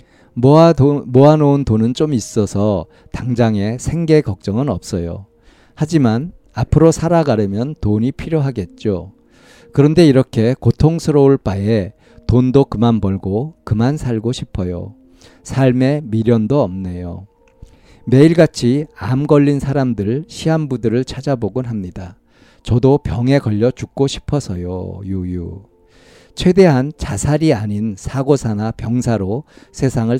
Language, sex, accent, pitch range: Korean, male, native, 105-140 Hz